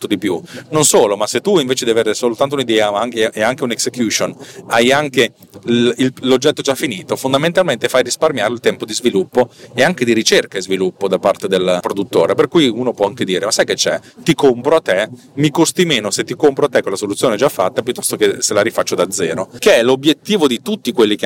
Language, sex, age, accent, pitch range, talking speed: Italian, male, 40-59, native, 110-145 Hz, 220 wpm